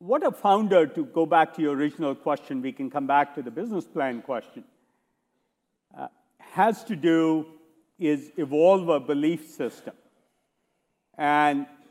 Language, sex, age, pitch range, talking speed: English, male, 50-69, 155-230 Hz, 145 wpm